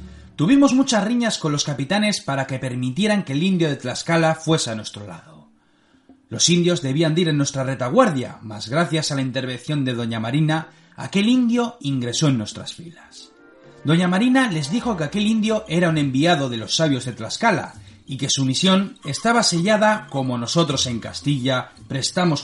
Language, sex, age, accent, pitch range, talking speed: Spanish, male, 30-49, Spanish, 130-195 Hz, 175 wpm